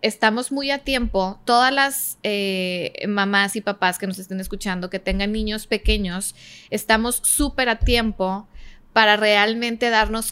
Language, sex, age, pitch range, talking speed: Spanish, female, 20-39, 200-245 Hz, 145 wpm